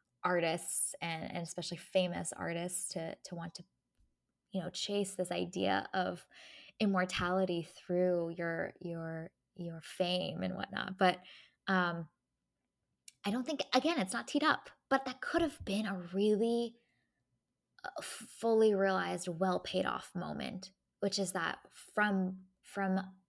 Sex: female